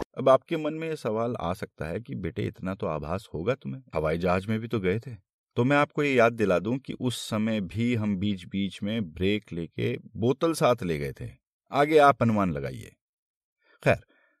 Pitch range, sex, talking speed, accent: 85-115 Hz, male, 210 wpm, native